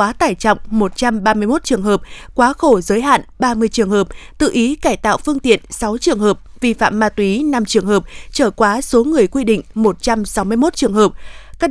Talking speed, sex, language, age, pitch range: 200 wpm, female, Vietnamese, 20-39, 205-255 Hz